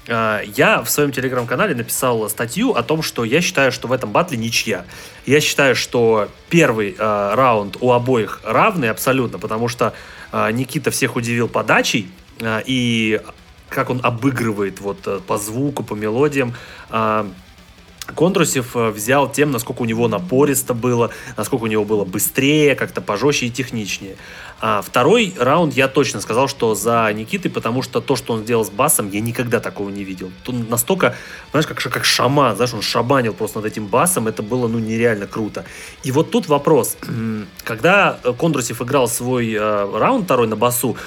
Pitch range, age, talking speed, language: 110-140 Hz, 20-39, 165 wpm, Russian